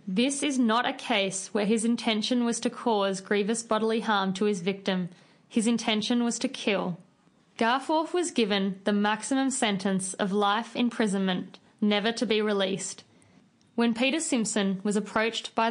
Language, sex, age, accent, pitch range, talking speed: English, female, 20-39, Australian, 195-230 Hz, 155 wpm